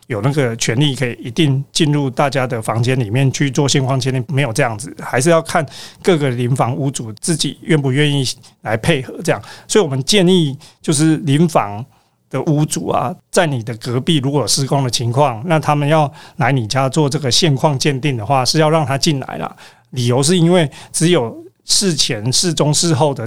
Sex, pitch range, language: male, 130-160 Hz, Chinese